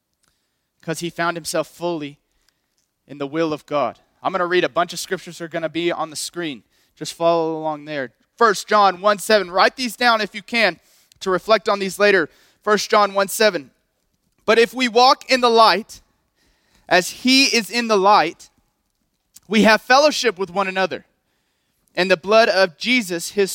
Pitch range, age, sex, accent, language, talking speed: 165-210 Hz, 30-49, male, American, English, 180 wpm